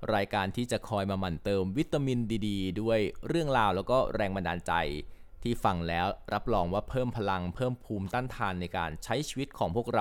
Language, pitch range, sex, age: Thai, 95-130 Hz, male, 20-39